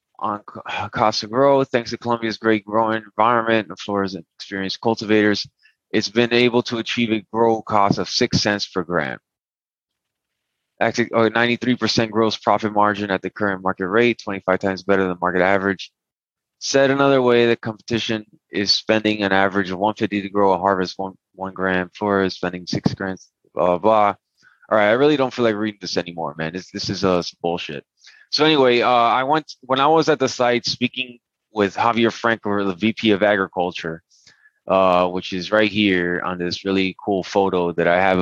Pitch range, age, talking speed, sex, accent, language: 95-115 Hz, 20-39, 185 wpm, male, American, English